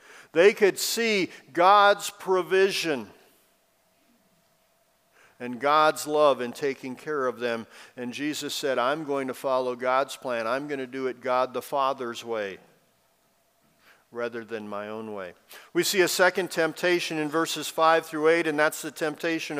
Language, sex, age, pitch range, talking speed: English, male, 50-69, 145-180 Hz, 155 wpm